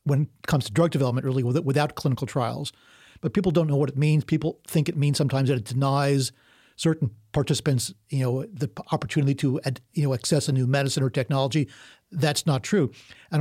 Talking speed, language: 195 wpm, English